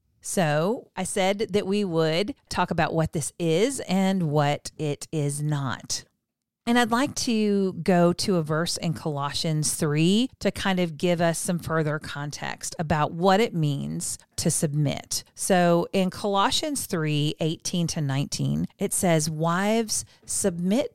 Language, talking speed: English, 150 wpm